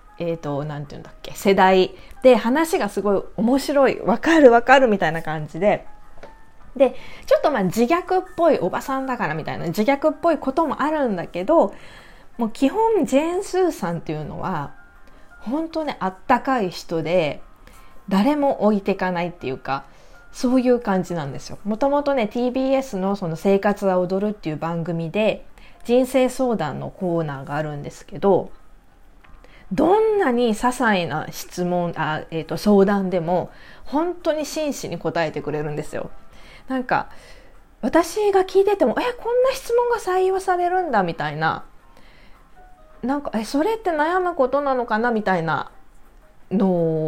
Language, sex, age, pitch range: Japanese, female, 20-39, 170-280 Hz